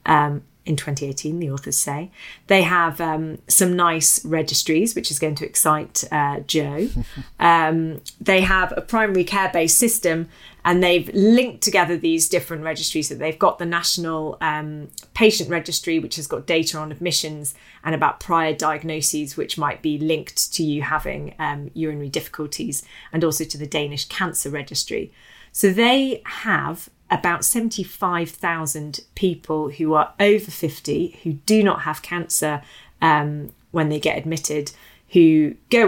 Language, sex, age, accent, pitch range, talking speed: English, female, 30-49, British, 155-175 Hz, 150 wpm